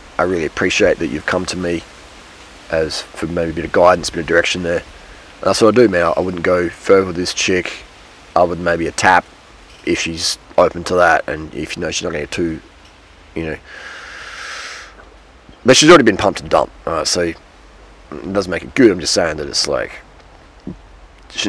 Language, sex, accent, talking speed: English, male, Australian, 210 wpm